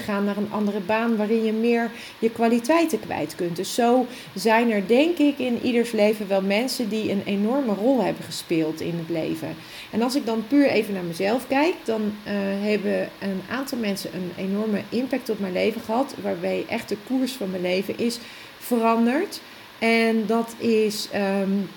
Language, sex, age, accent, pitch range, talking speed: Dutch, female, 40-59, Dutch, 195-230 Hz, 180 wpm